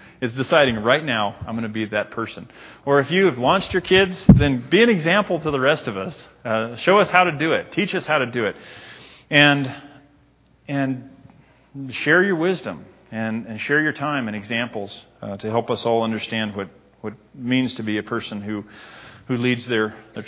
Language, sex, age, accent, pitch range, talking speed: English, male, 40-59, American, 110-140 Hz, 210 wpm